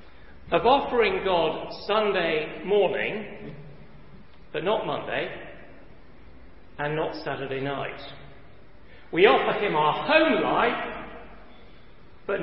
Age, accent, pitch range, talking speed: 40-59, British, 145-240 Hz, 90 wpm